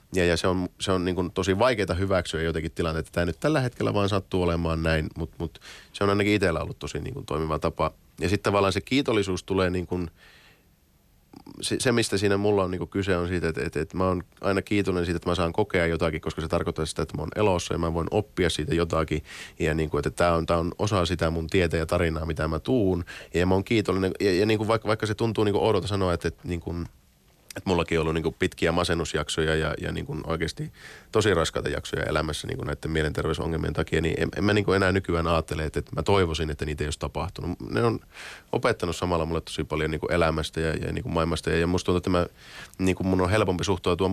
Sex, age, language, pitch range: male, 30-49, Finnish, 80-95 Hz